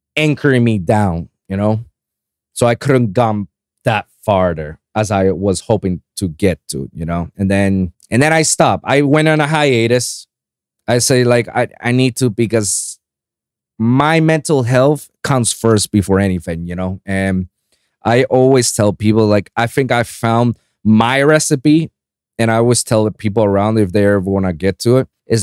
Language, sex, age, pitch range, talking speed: English, male, 20-39, 105-145 Hz, 180 wpm